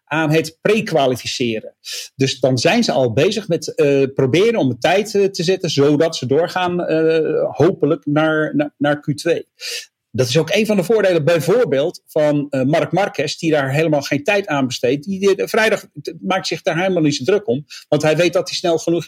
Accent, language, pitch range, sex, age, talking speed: Dutch, English, 145-185 Hz, male, 40-59, 190 wpm